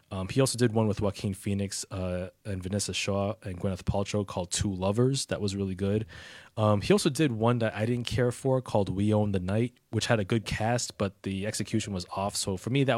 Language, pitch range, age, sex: English, 95-115 Hz, 20-39, male